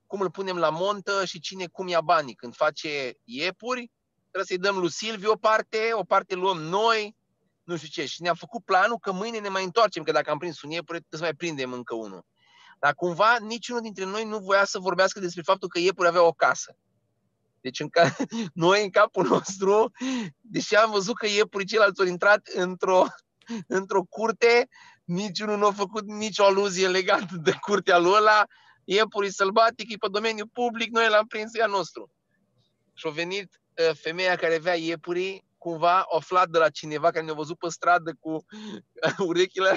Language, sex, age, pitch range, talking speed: Romanian, male, 30-49, 170-215 Hz, 185 wpm